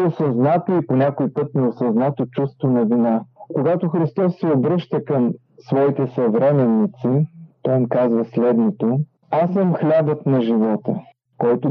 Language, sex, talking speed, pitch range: Bulgarian, male, 135 wpm, 125-160 Hz